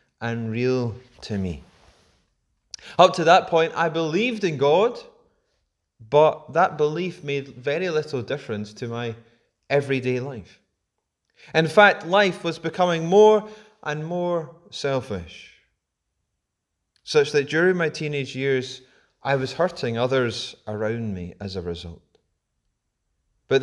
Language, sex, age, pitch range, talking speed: English, male, 30-49, 120-170 Hz, 120 wpm